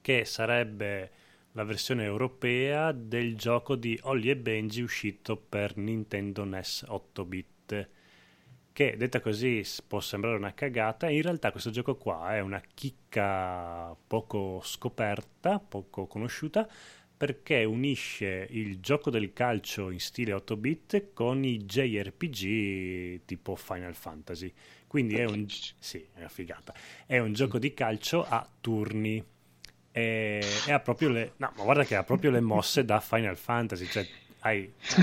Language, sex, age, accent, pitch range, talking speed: Italian, male, 30-49, native, 95-125 Hz, 135 wpm